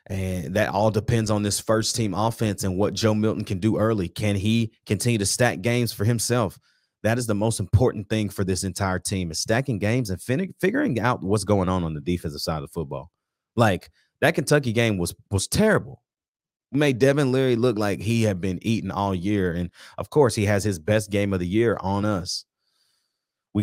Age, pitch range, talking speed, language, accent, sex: 30-49, 95-115 Hz, 215 wpm, English, American, male